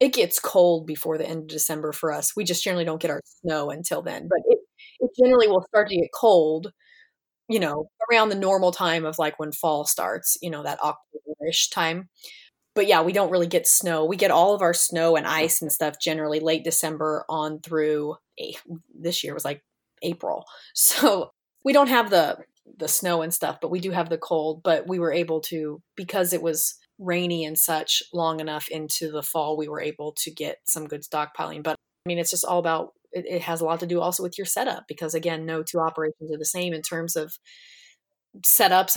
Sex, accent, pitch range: female, American, 155-185 Hz